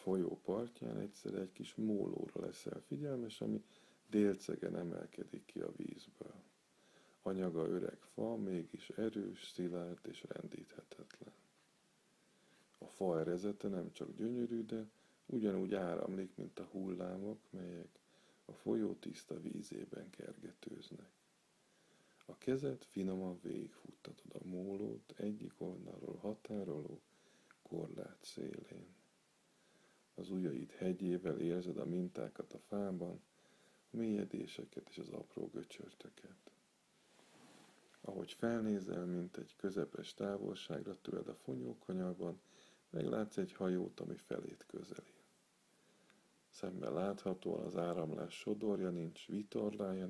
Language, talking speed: Hungarian, 105 wpm